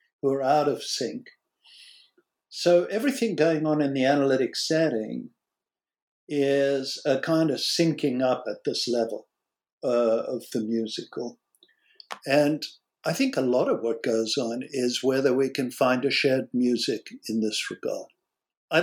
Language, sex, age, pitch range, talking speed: English, male, 60-79, 125-160 Hz, 150 wpm